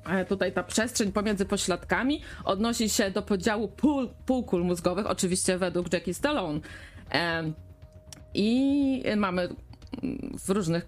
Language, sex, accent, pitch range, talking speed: Polish, female, native, 165-205 Hz, 115 wpm